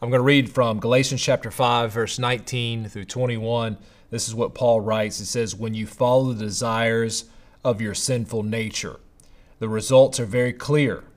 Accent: American